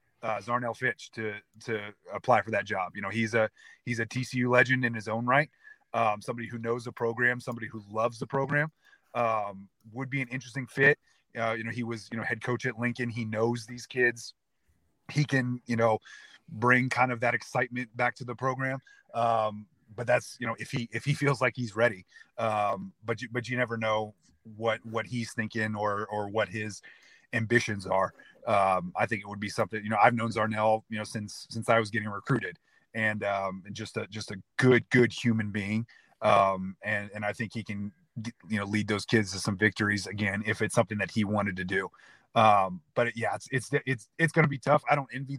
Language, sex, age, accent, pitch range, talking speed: English, male, 30-49, American, 110-125 Hz, 215 wpm